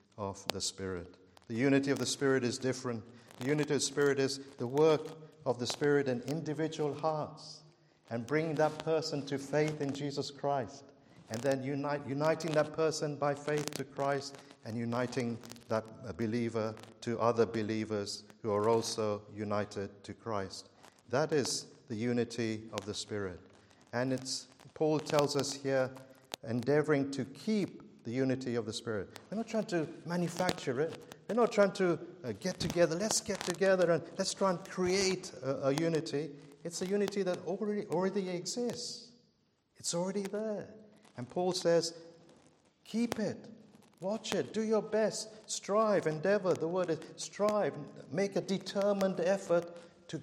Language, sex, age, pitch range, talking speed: English, male, 50-69, 125-180 Hz, 155 wpm